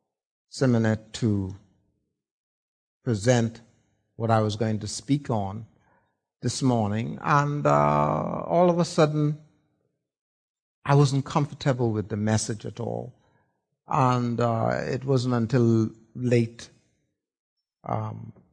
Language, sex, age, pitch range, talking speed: English, male, 60-79, 110-140 Hz, 105 wpm